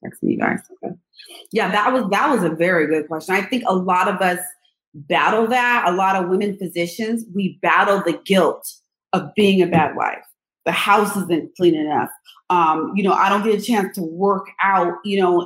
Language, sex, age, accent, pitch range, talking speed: English, female, 30-49, American, 180-225 Hz, 205 wpm